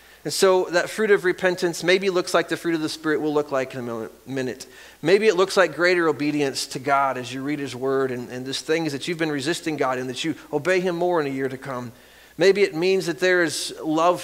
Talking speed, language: 255 wpm, English